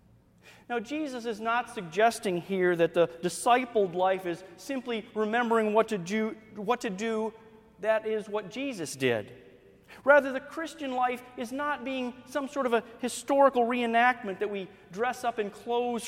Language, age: English, 40-59